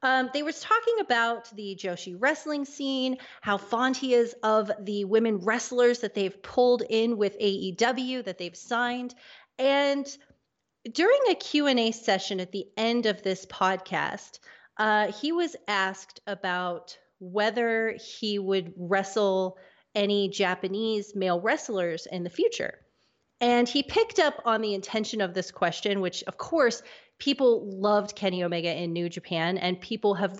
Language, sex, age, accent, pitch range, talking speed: English, female, 30-49, American, 185-245 Hz, 150 wpm